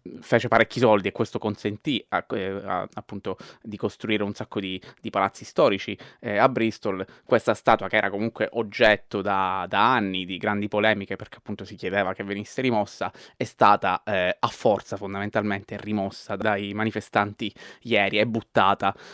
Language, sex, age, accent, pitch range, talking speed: Italian, male, 20-39, native, 100-110 Hz, 160 wpm